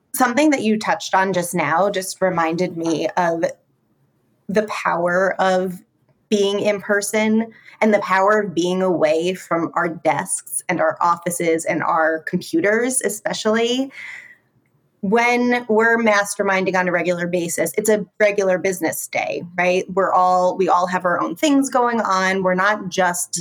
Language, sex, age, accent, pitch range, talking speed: English, female, 30-49, American, 175-210 Hz, 150 wpm